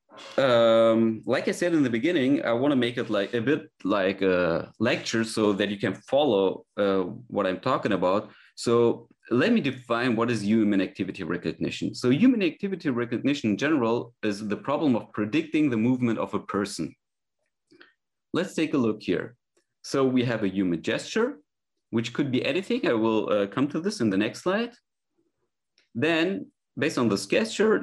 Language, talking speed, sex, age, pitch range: English, 180 wpm, male, 30-49, 100-130 Hz